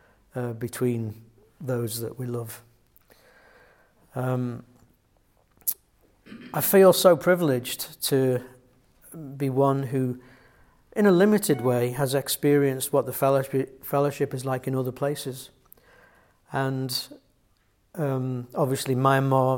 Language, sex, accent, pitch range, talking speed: English, male, British, 125-150 Hz, 105 wpm